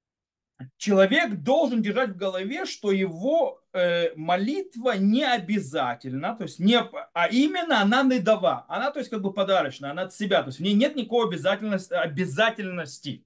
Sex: male